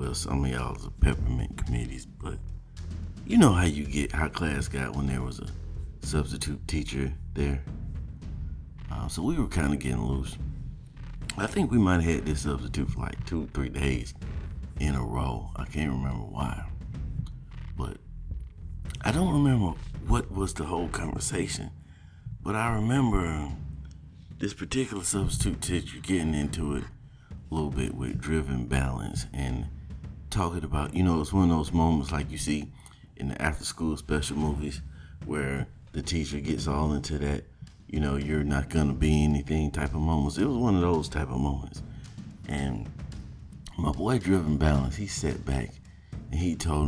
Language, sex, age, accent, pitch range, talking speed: English, male, 50-69, American, 70-85 Hz, 170 wpm